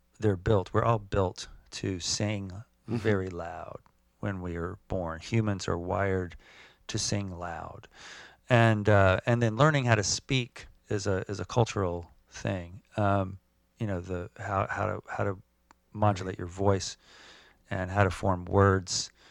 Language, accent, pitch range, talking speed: English, American, 90-110 Hz, 155 wpm